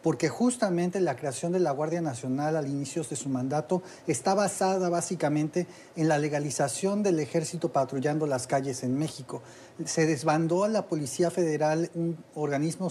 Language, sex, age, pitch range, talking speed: English, male, 40-59, 140-175 Hz, 160 wpm